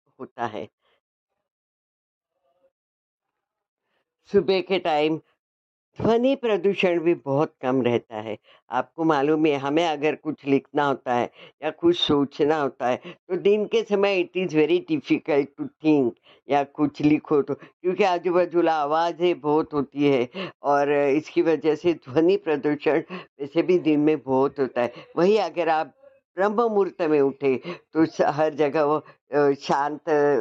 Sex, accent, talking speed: female, native, 145 wpm